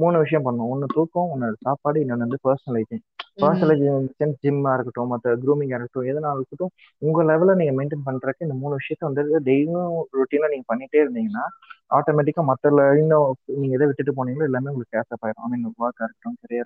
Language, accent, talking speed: Tamil, native, 160 wpm